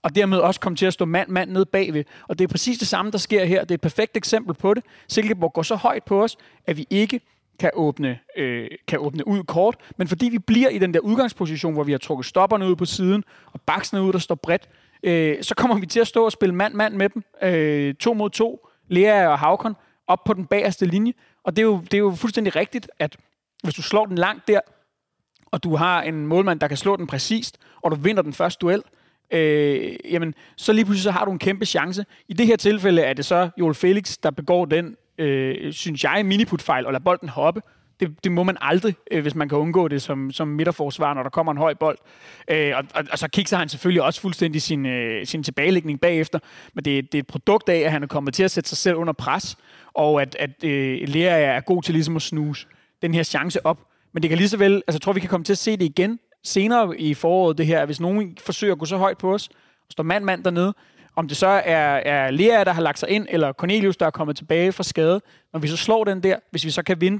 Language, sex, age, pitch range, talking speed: Danish, male, 30-49, 155-200 Hz, 255 wpm